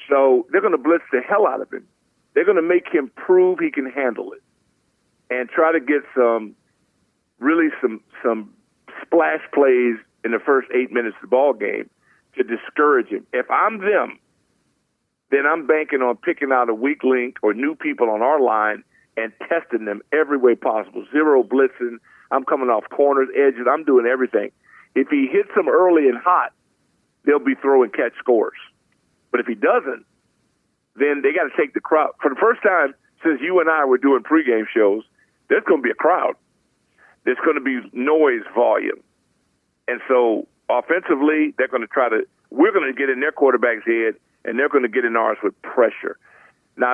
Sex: male